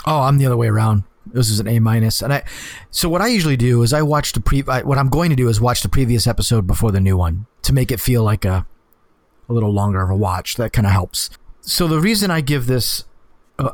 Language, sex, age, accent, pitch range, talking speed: English, male, 40-59, American, 110-145 Hz, 265 wpm